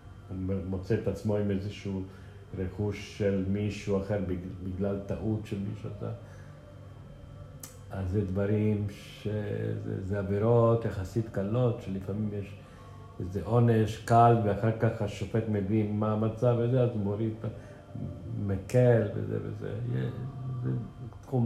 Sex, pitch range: male, 95-115 Hz